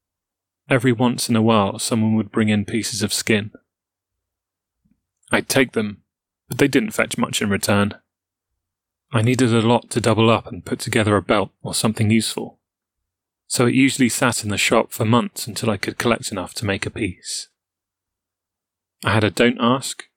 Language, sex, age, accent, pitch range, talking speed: English, male, 30-49, British, 95-115 Hz, 180 wpm